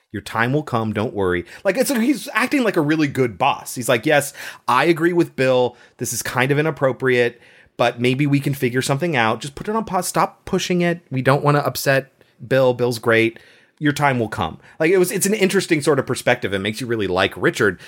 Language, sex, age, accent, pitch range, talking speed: English, male, 30-49, American, 110-145 Hz, 230 wpm